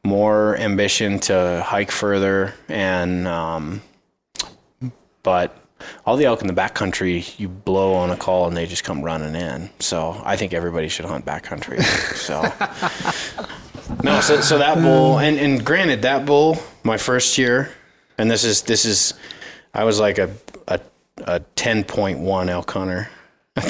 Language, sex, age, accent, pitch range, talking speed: English, male, 30-49, American, 90-105 Hz, 150 wpm